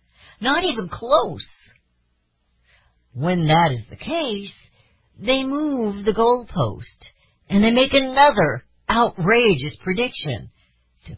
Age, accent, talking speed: 50-69, American, 100 wpm